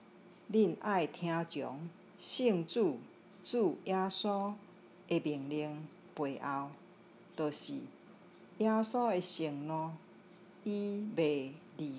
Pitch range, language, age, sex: 170-215 Hz, Chinese, 50-69, female